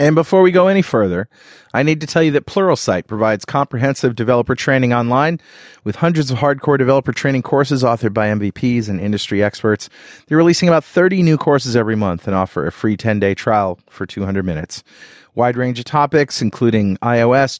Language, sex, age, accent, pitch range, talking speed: English, male, 40-59, American, 115-155 Hz, 185 wpm